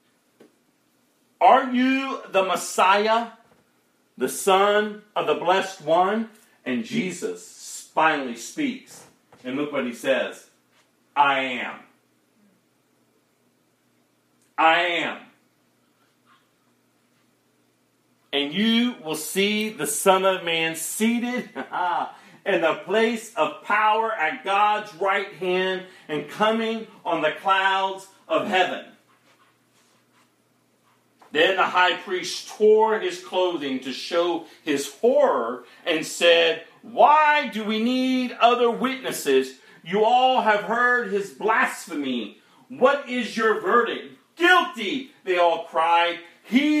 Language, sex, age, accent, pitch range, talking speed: English, male, 40-59, American, 160-235 Hz, 105 wpm